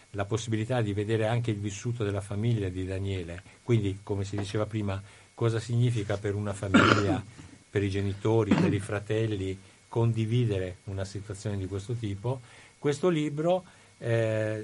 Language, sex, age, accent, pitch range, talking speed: Italian, male, 50-69, native, 105-120 Hz, 150 wpm